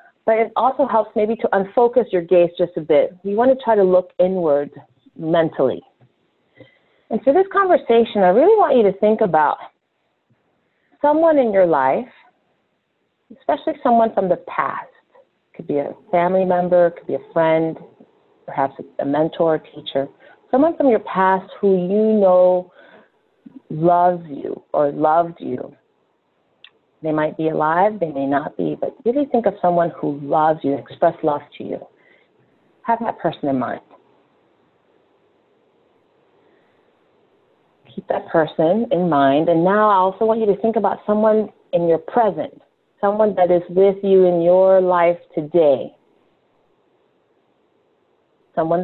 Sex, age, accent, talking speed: female, 30-49, American, 150 wpm